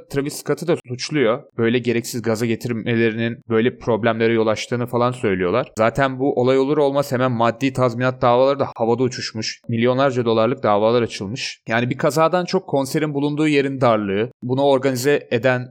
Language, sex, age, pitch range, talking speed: Turkish, male, 30-49, 115-135 Hz, 155 wpm